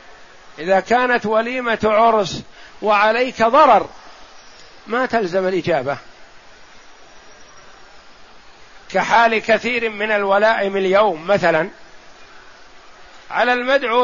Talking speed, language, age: 75 wpm, Arabic, 50-69